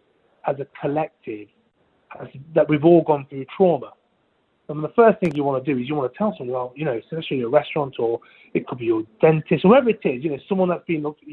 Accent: British